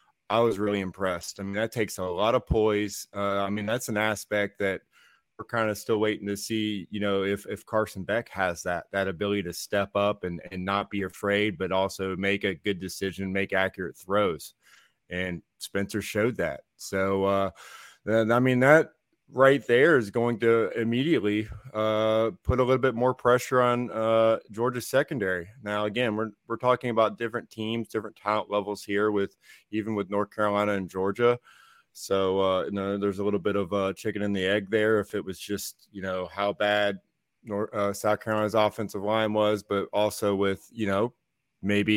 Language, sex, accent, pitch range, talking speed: English, male, American, 100-110 Hz, 195 wpm